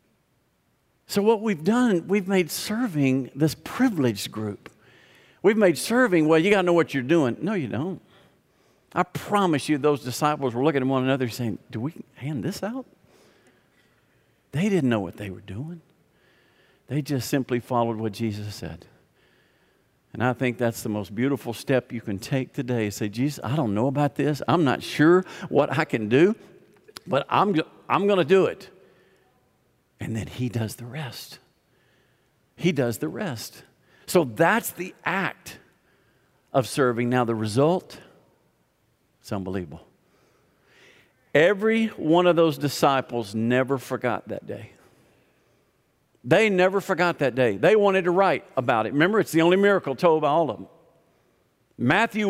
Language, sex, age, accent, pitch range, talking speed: English, male, 50-69, American, 125-185 Hz, 160 wpm